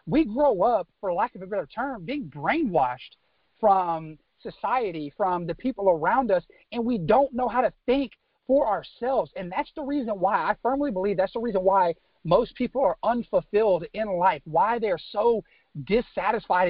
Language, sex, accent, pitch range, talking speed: English, male, American, 180-240 Hz, 175 wpm